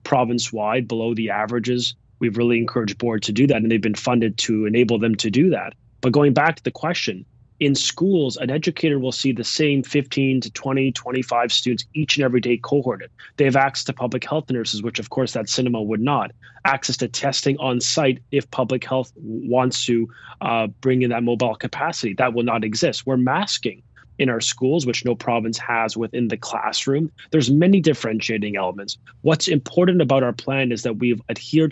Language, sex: English, male